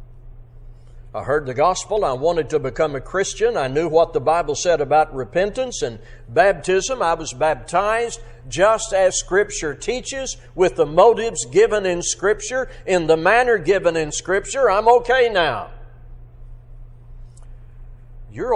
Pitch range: 125-195 Hz